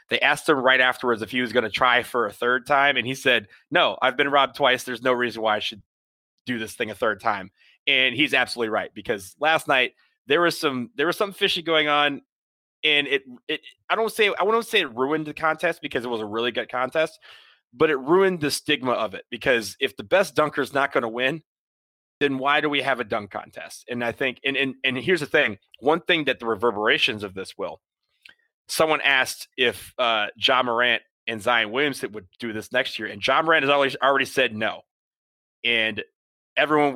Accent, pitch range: American, 115-145 Hz